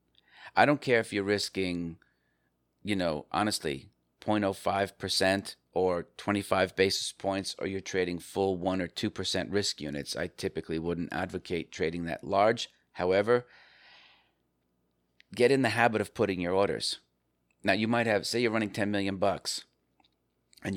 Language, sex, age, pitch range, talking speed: English, male, 40-59, 80-100 Hz, 140 wpm